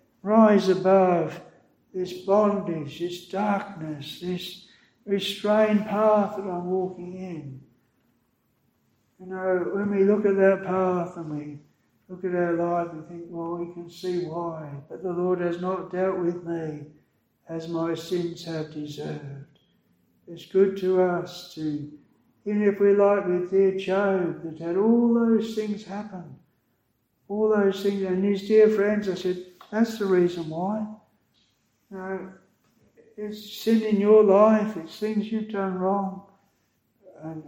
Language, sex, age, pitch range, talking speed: English, male, 60-79, 165-200 Hz, 145 wpm